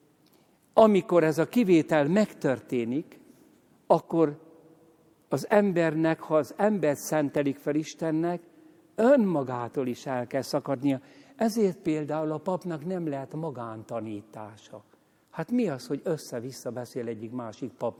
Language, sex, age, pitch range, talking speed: Hungarian, male, 60-79, 130-205 Hz, 115 wpm